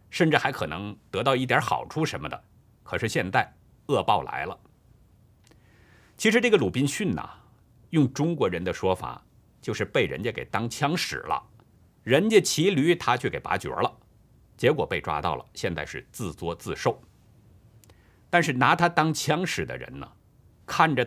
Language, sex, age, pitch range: Chinese, male, 50-69, 105-145 Hz